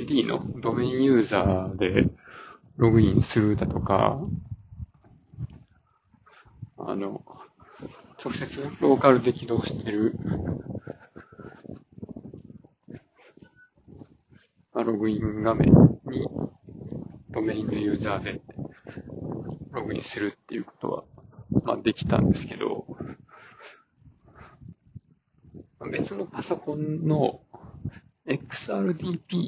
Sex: male